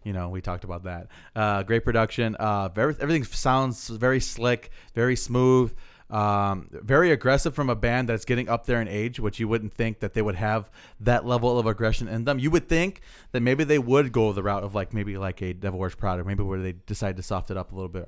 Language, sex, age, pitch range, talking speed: English, male, 20-39, 100-125 Hz, 240 wpm